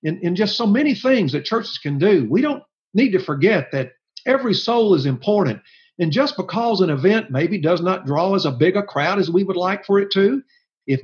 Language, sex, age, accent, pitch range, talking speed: English, male, 50-69, American, 160-220 Hz, 215 wpm